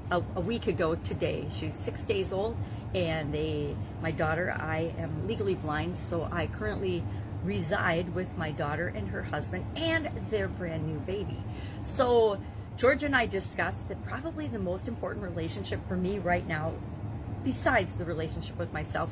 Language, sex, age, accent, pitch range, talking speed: English, female, 40-59, American, 100-160 Hz, 160 wpm